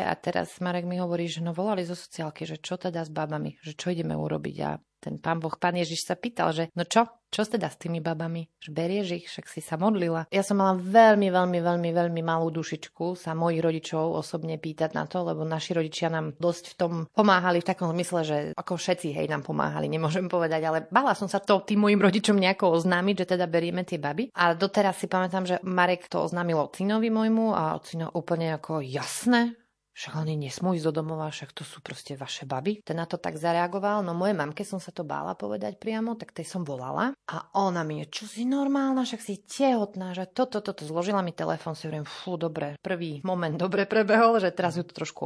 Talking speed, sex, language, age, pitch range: 220 wpm, female, Slovak, 30-49, 160-195 Hz